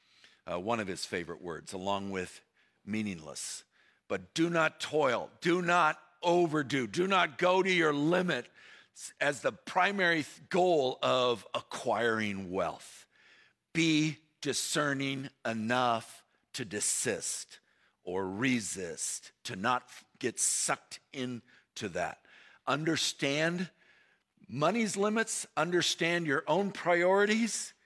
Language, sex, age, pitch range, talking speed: English, male, 50-69, 105-160 Hz, 105 wpm